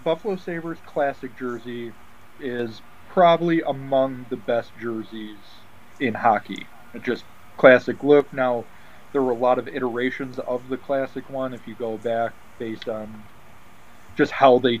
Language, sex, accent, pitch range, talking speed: English, male, American, 115-130 Hz, 145 wpm